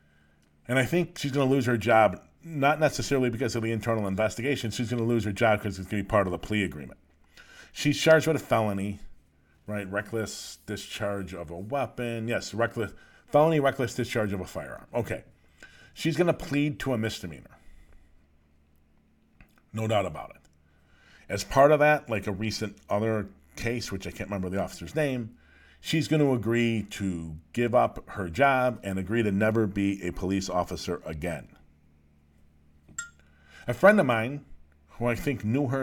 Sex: male